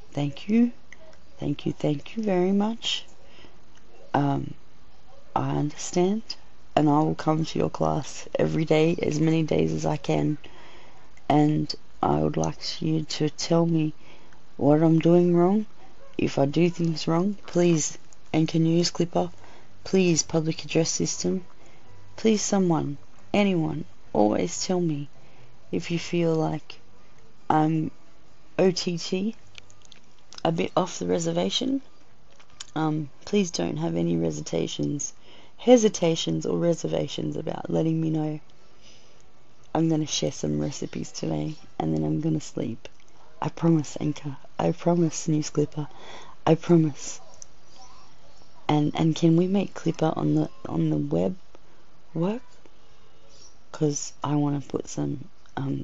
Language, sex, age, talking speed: English, female, 30-49, 130 wpm